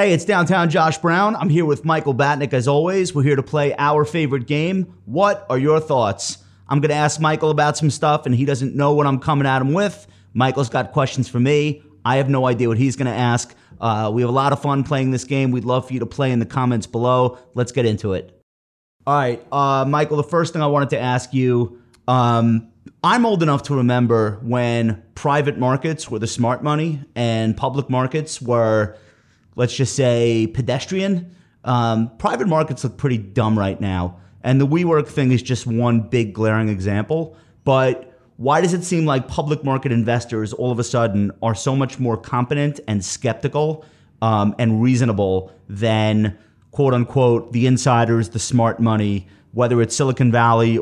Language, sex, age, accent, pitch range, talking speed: English, male, 30-49, American, 115-145 Hz, 190 wpm